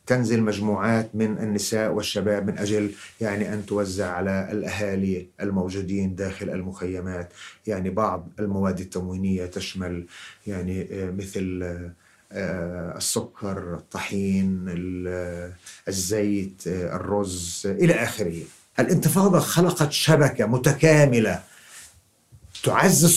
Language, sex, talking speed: Arabic, male, 85 wpm